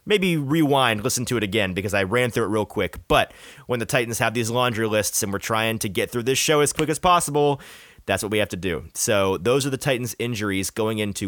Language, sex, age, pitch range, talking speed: English, male, 30-49, 105-140 Hz, 250 wpm